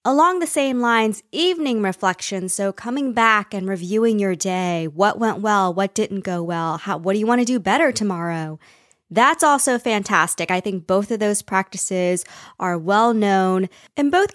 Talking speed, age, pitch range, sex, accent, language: 170 wpm, 20-39, 190-250 Hz, female, American, English